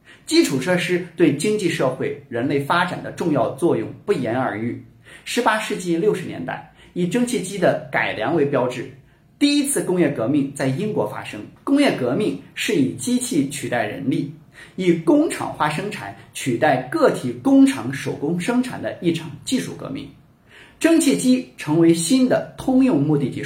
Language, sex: Chinese, male